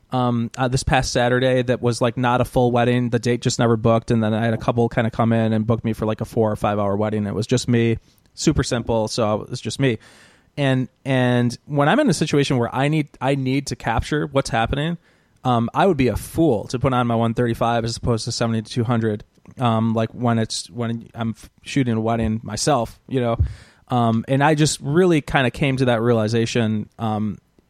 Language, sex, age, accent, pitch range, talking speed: English, male, 20-39, American, 115-140 Hz, 235 wpm